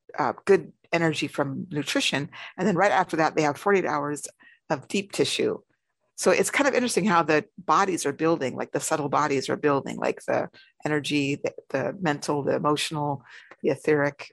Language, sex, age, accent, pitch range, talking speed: English, female, 50-69, American, 145-175 Hz, 180 wpm